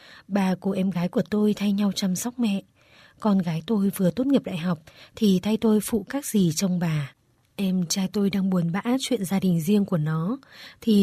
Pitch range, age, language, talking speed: 175-215 Hz, 20-39, Vietnamese, 220 wpm